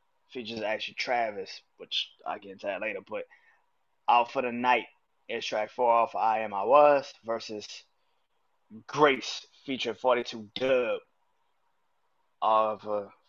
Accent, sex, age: American, male, 20-39